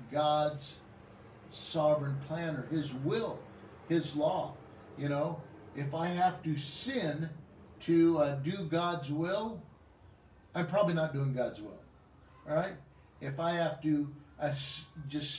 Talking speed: 130 wpm